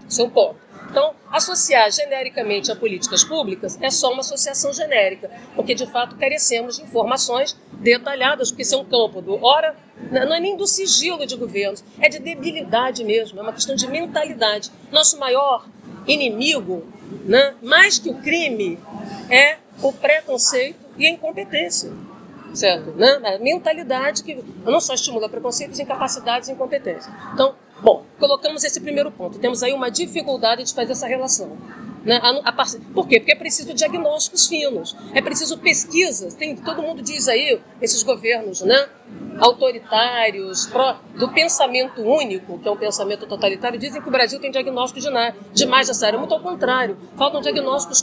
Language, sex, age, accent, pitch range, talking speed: English, female, 40-59, Brazilian, 230-295 Hz, 165 wpm